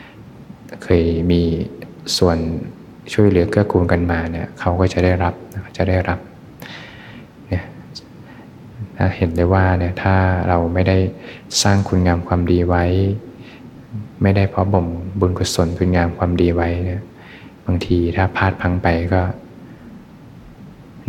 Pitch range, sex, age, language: 85-95 Hz, male, 20-39, Thai